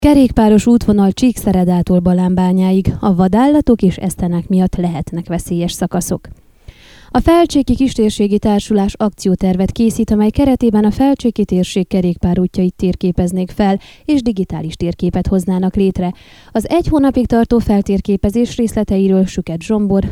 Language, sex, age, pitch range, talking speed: Hungarian, female, 20-39, 185-230 Hz, 115 wpm